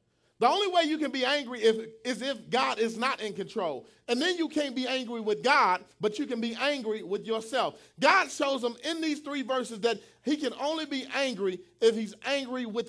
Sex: male